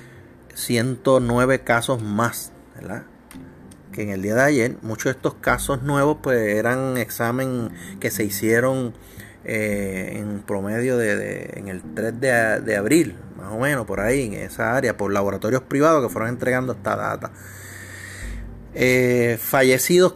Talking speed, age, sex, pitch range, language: 150 wpm, 30-49, male, 105-130 Hz, Spanish